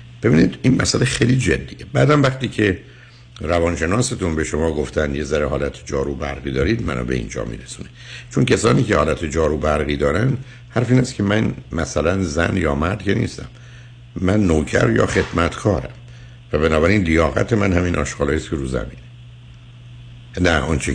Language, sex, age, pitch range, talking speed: Persian, male, 60-79, 70-115 Hz, 160 wpm